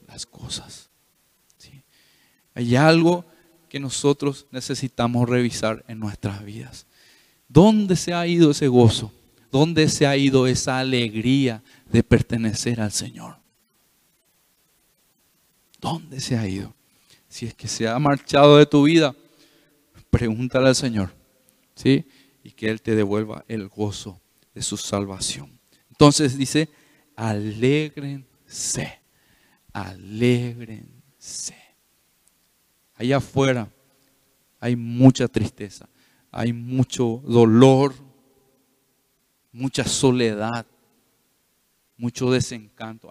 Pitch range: 115-145 Hz